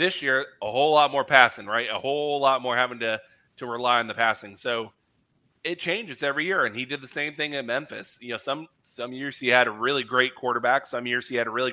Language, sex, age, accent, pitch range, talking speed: English, male, 30-49, American, 115-130 Hz, 250 wpm